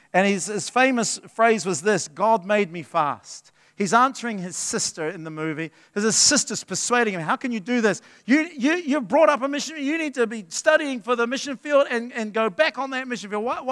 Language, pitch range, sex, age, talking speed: English, 195-260 Hz, male, 50-69, 225 wpm